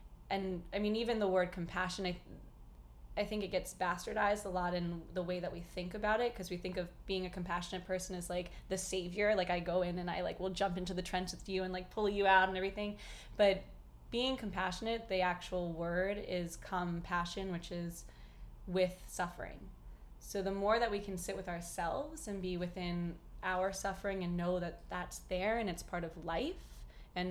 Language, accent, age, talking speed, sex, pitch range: English, American, 20-39, 205 wpm, female, 175-200 Hz